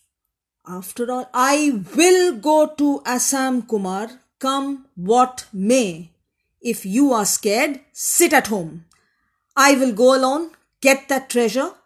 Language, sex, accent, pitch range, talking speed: English, female, Indian, 180-260 Hz, 125 wpm